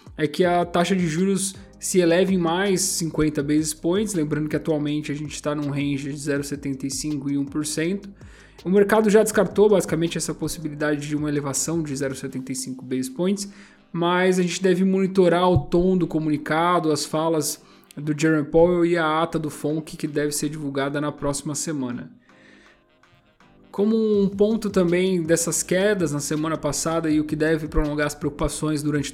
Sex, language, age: male, Portuguese, 20-39